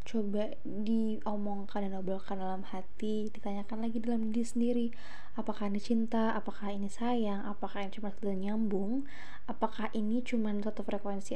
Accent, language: native, Indonesian